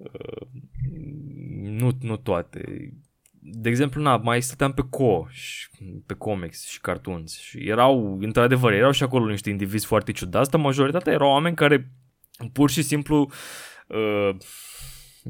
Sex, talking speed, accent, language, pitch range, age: male, 135 wpm, native, Romanian, 100-130 Hz, 20-39